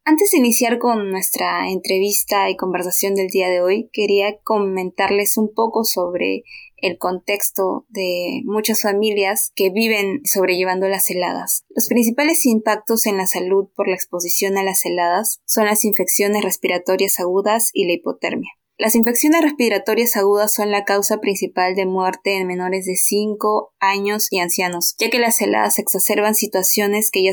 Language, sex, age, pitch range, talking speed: Spanish, female, 20-39, 185-215 Hz, 160 wpm